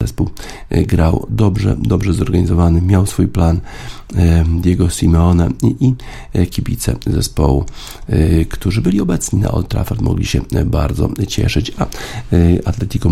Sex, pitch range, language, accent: male, 85-105 Hz, Polish, native